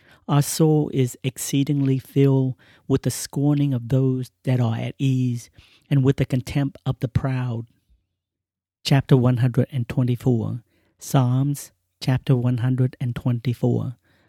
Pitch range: 120-140 Hz